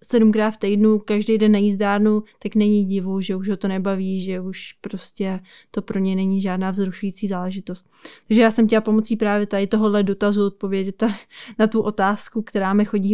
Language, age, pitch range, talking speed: Czech, 20-39, 205-230 Hz, 185 wpm